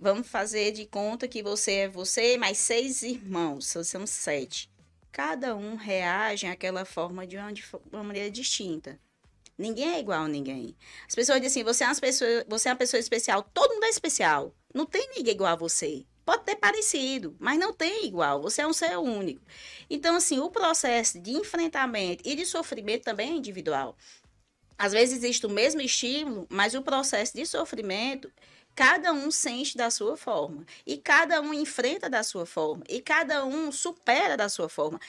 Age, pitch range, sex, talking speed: 20-39, 205-290 Hz, female, 185 wpm